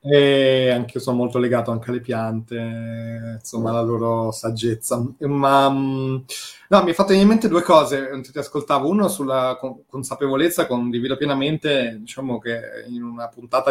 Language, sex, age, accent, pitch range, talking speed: Italian, male, 30-49, native, 115-135 Hz, 150 wpm